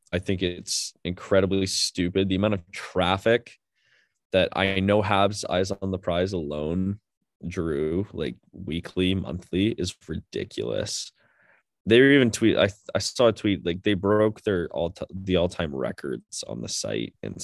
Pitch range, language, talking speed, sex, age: 85-100 Hz, English, 160 wpm, male, 20-39